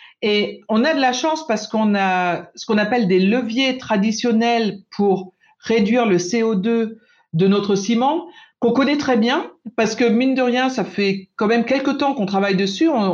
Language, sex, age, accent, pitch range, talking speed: French, female, 50-69, French, 195-260 Hz, 185 wpm